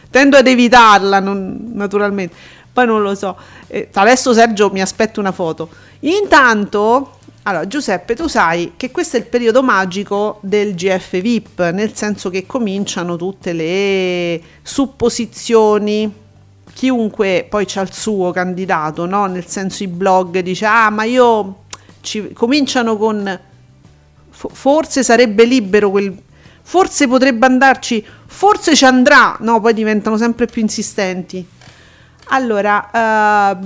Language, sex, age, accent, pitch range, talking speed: Italian, female, 40-59, native, 185-245 Hz, 130 wpm